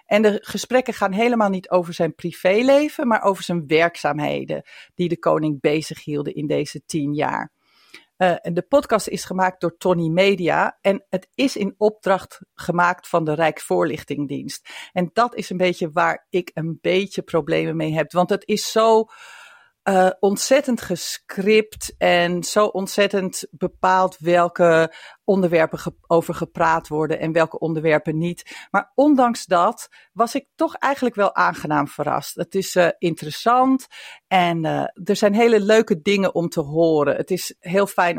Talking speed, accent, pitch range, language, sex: 155 wpm, Dutch, 170-215 Hz, Dutch, female